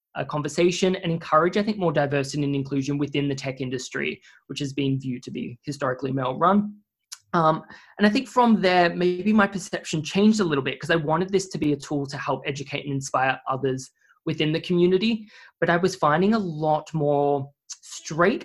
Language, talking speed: English, 190 wpm